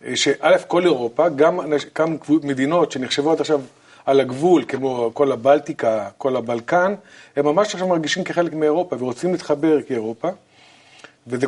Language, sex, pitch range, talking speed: Hebrew, male, 140-180 Hz, 135 wpm